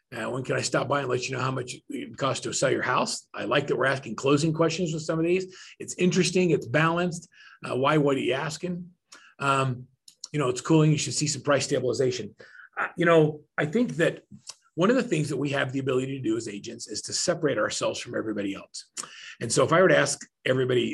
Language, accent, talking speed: English, American, 240 wpm